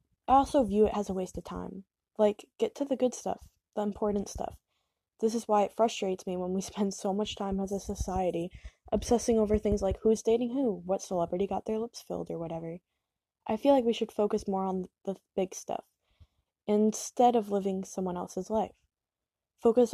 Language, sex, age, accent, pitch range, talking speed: English, female, 10-29, American, 195-230 Hz, 200 wpm